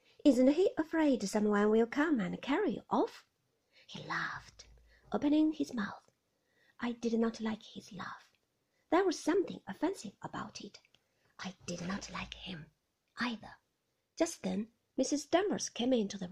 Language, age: Chinese, 30-49